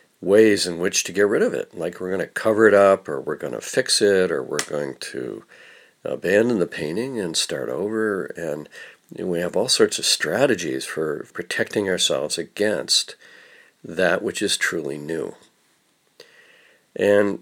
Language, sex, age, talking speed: English, male, 60-79, 165 wpm